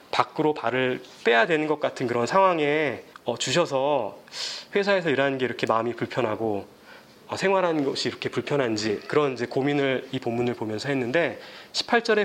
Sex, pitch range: male, 135-180 Hz